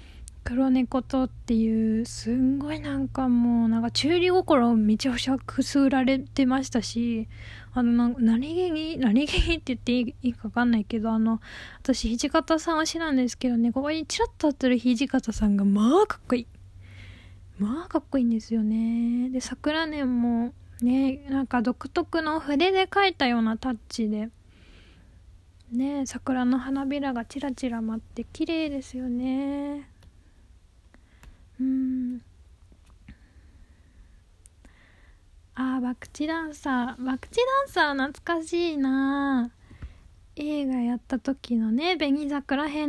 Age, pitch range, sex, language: 10-29, 225-285 Hz, female, Japanese